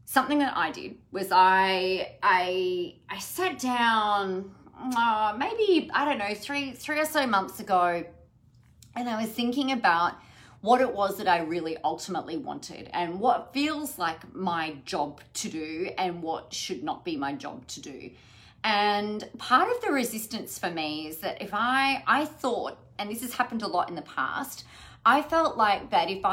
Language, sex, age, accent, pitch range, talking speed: English, female, 30-49, Australian, 180-280 Hz, 180 wpm